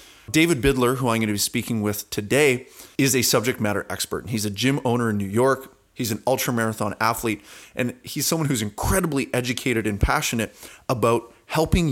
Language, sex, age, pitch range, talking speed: English, male, 30-49, 105-135 Hz, 180 wpm